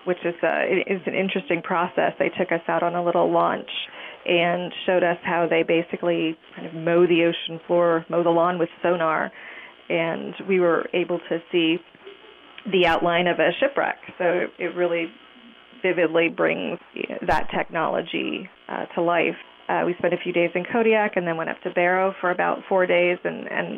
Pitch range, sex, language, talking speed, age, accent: 170-185 Hz, female, English, 180 wpm, 30-49, American